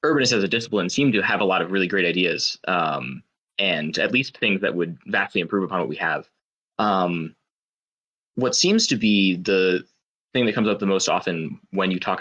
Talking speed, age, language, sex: 205 wpm, 20-39, English, male